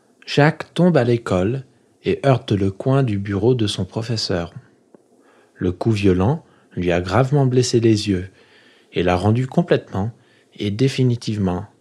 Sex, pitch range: male, 105-135 Hz